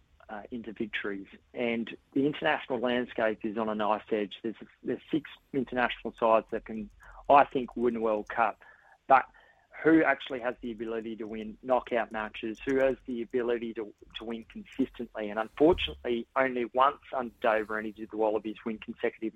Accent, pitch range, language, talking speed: Australian, 110-130 Hz, English, 170 wpm